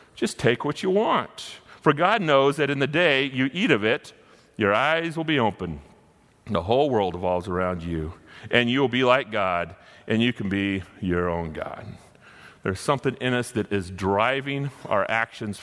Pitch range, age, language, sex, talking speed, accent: 105-140 Hz, 40-59, English, male, 190 wpm, American